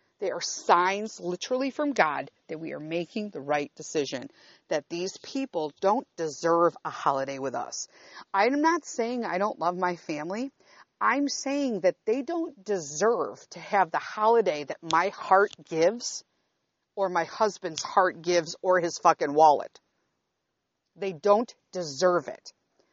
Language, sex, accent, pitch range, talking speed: English, female, American, 165-240 Hz, 150 wpm